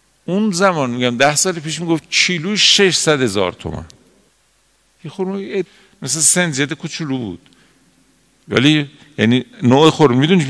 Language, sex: Persian, male